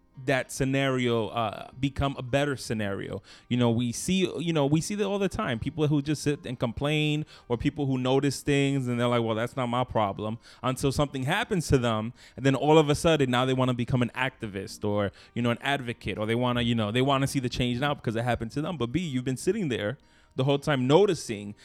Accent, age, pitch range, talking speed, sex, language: American, 20-39, 115-145 Hz, 245 wpm, male, English